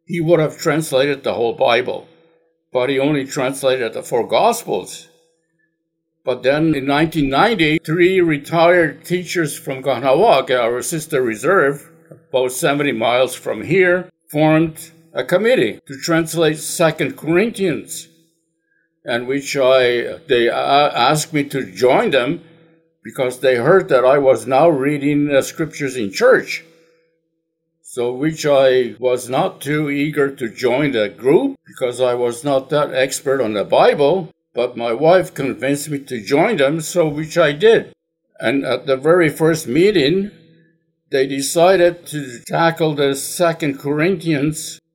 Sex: male